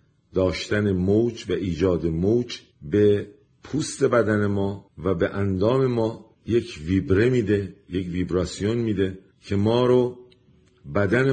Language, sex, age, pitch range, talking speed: Persian, male, 50-69, 90-115 Hz, 120 wpm